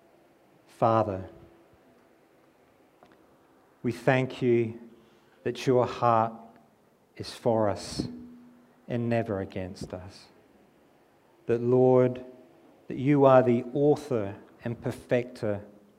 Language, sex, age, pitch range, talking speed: English, male, 50-69, 100-125 Hz, 85 wpm